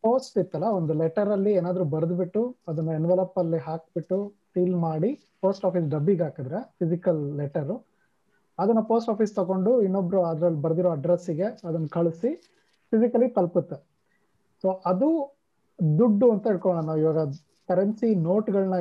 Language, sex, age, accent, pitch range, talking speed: Kannada, male, 20-39, native, 170-215 Hz, 120 wpm